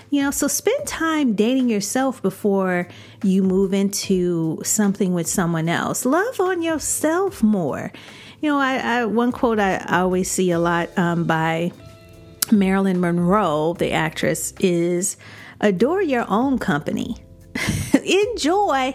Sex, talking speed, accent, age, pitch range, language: female, 135 wpm, American, 40-59, 180-250 Hz, English